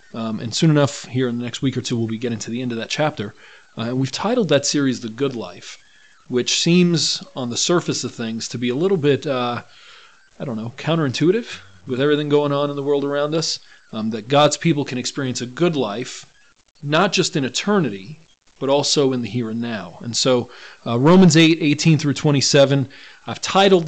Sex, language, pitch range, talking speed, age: male, English, 120-155 Hz, 210 wpm, 40-59